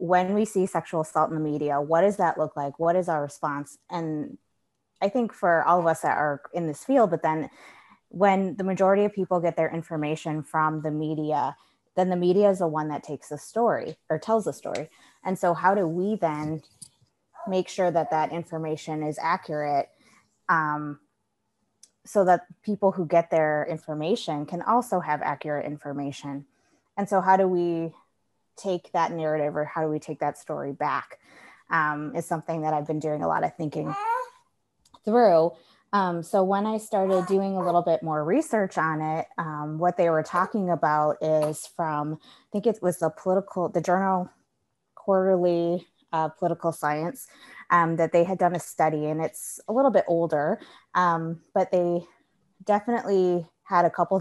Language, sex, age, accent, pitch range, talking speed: English, female, 20-39, American, 155-190 Hz, 180 wpm